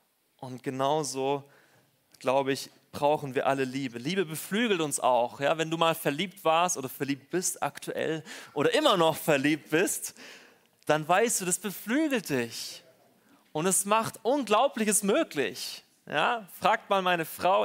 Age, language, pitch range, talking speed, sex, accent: 30-49, English, 140-195 Hz, 145 wpm, male, German